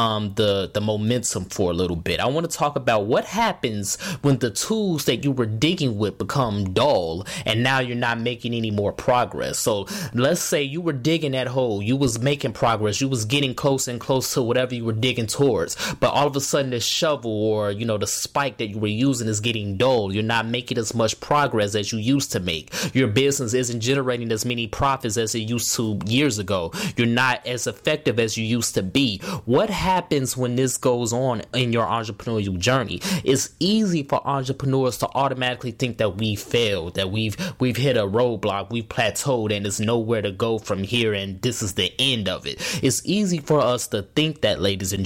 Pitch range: 110-140 Hz